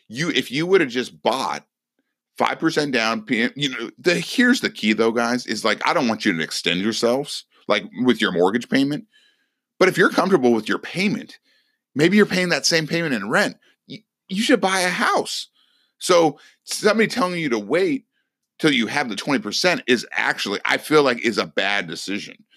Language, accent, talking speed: English, American, 190 wpm